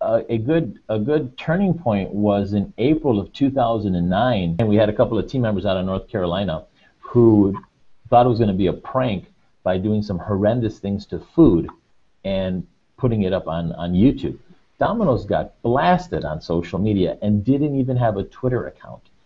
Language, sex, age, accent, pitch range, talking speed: English, male, 50-69, American, 95-125 Hz, 185 wpm